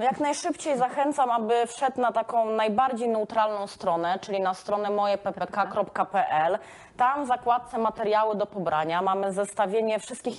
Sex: female